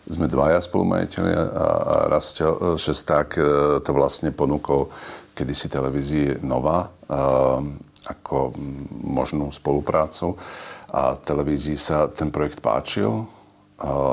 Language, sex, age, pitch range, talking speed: Czech, male, 50-69, 70-80 Hz, 100 wpm